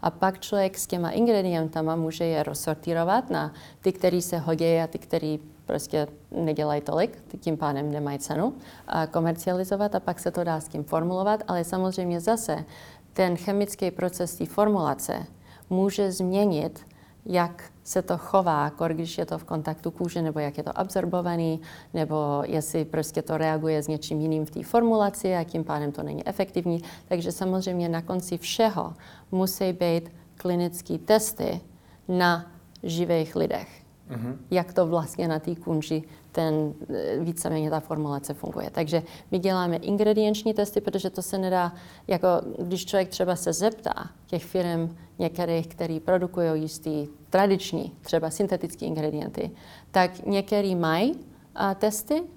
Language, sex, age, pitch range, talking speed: Czech, female, 40-59, 160-190 Hz, 145 wpm